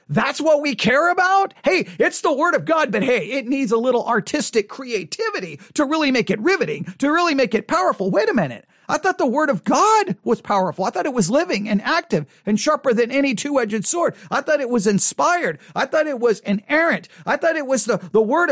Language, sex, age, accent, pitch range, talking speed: English, male, 40-59, American, 205-295 Hz, 225 wpm